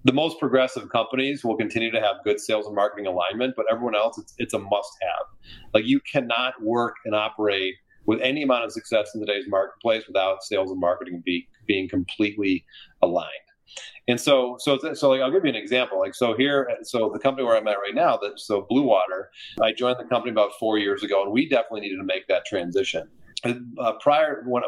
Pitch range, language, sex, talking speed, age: 105-135 Hz, English, male, 200 wpm, 30-49